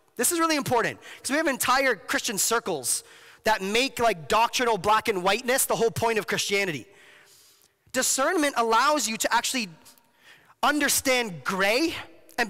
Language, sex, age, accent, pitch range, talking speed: English, male, 30-49, American, 205-265 Hz, 145 wpm